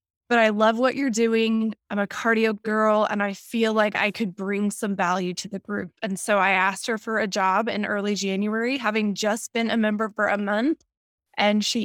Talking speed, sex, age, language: 220 wpm, female, 20-39, English